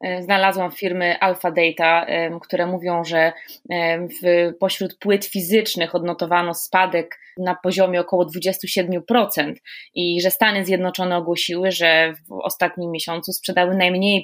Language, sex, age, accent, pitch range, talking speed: Polish, female, 20-39, native, 165-195 Hz, 120 wpm